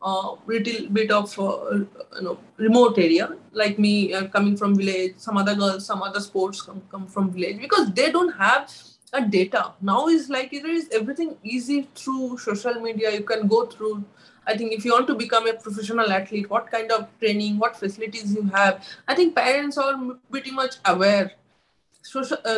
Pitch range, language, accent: 205-260 Hz, English, Indian